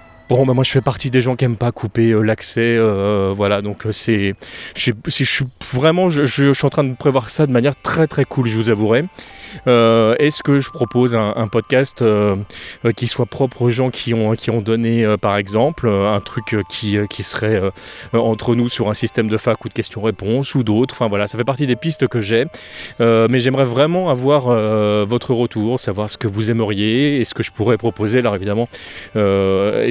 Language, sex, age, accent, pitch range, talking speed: French, male, 30-49, French, 110-130 Hz, 235 wpm